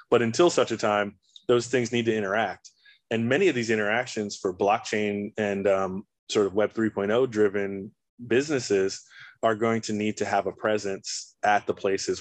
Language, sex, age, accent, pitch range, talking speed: English, male, 20-39, American, 100-110 Hz, 175 wpm